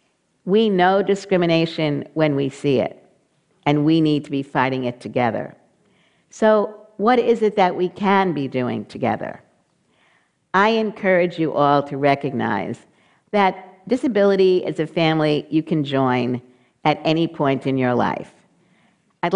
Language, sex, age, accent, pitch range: Chinese, female, 50-69, American, 140-190 Hz